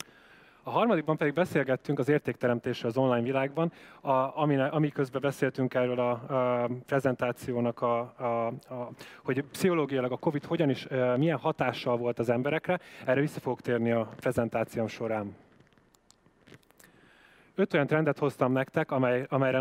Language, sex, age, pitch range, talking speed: Hungarian, male, 20-39, 125-145 Hz, 115 wpm